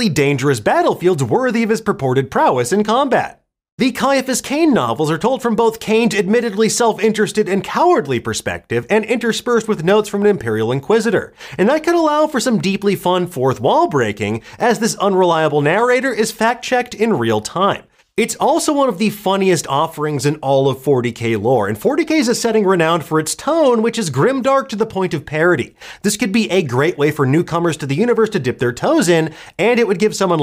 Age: 30-49